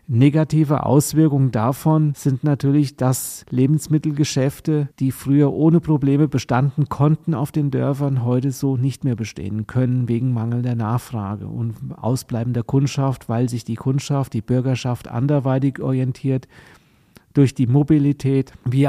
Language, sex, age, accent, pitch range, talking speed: German, male, 40-59, German, 125-145 Hz, 125 wpm